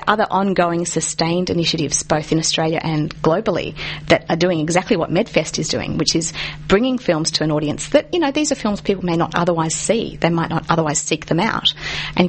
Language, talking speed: English, 210 wpm